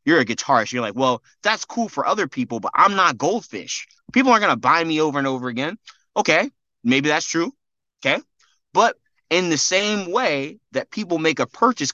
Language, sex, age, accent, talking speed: English, male, 30-49, American, 200 wpm